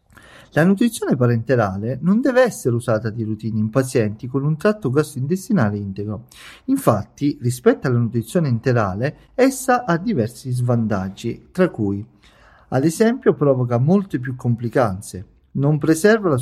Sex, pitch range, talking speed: male, 120-160 Hz, 130 wpm